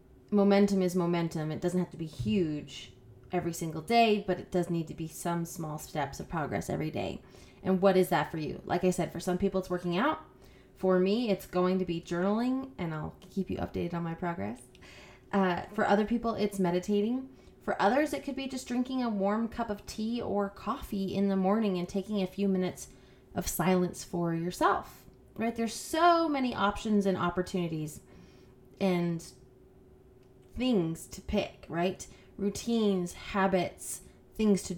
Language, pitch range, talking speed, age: English, 170-215 Hz, 180 wpm, 20-39